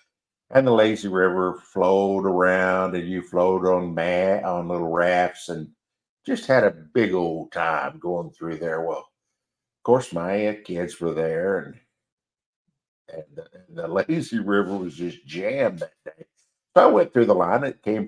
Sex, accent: male, American